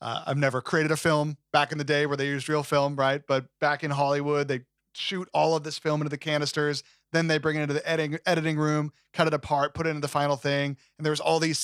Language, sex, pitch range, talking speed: English, male, 140-165 Hz, 265 wpm